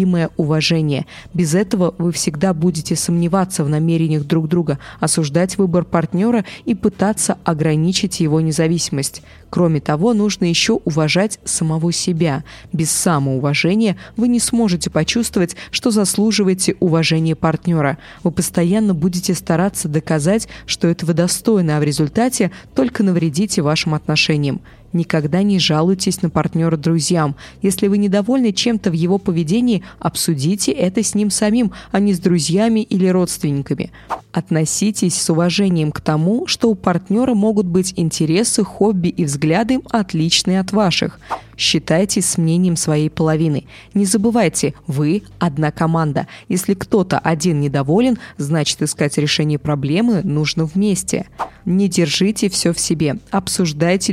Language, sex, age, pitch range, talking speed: Russian, female, 20-39, 160-200 Hz, 130 wpm